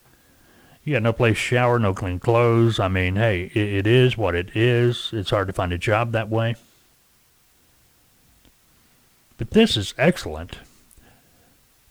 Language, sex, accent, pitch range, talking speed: English, male, American, 100-130 Hz, 145 wpm